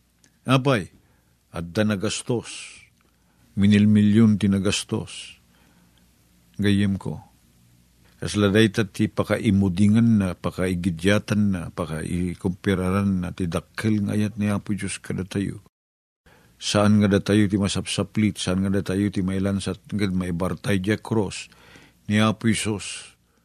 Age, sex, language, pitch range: 50-69, male, Filipino, 90-115 Hz